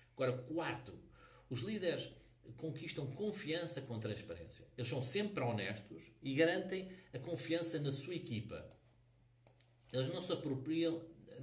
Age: 50-69